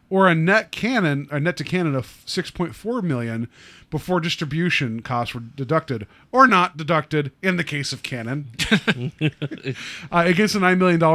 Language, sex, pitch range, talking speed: English, male, 130-170 Hz, 155 wpm